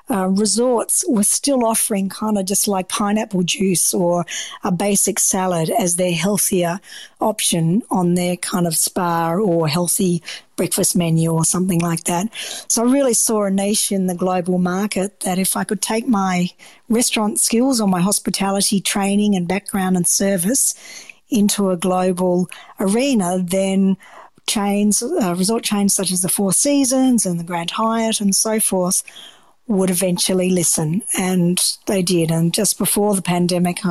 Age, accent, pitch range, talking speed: 50-69, Australian, 180-215 Hz, 160 wpm